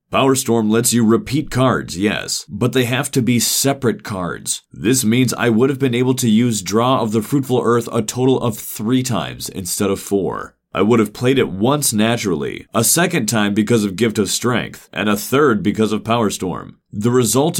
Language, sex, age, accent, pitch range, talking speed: English, male, 30-49, American, 105-130 Hz, 200 wpm